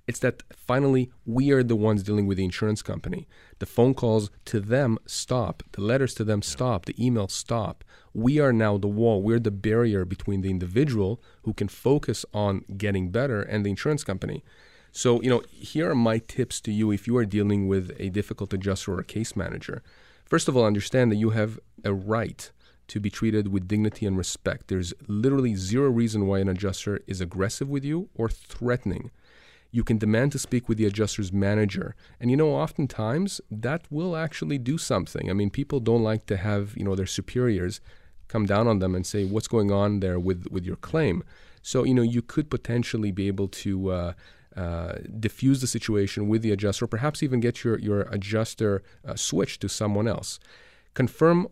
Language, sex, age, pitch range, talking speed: English, male, 30-49, 100-120 Hz, 200 wpm